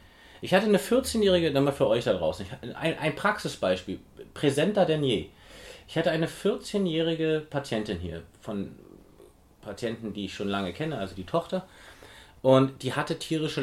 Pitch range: 105-160 Hz